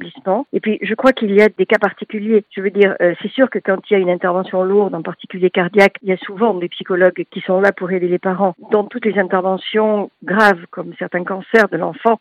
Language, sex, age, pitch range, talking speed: French, female, 50-69, 190-235 Hz, 245 wpm